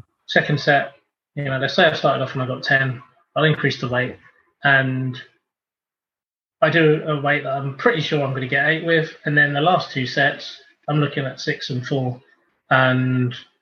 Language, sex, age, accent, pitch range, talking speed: English, male, 20-39, British, 130-155 Hz, 200 wpm